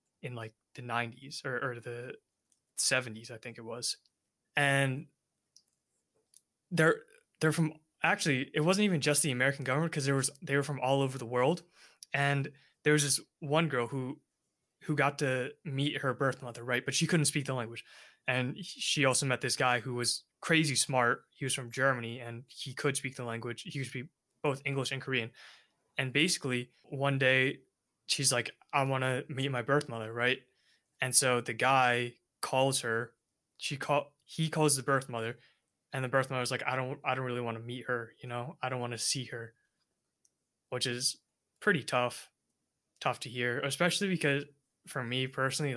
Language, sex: English, male